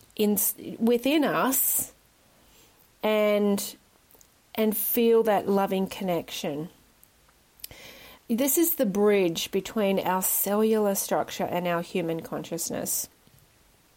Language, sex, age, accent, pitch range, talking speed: English, female, 40-59, Australian, 180-245 Hz, 90 wpm